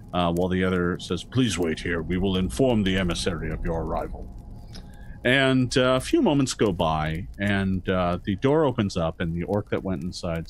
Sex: male